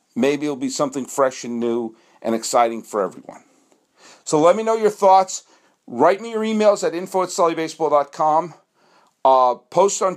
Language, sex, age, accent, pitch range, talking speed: English, male, 50-69, American, 130-185 Hz, 155 wpm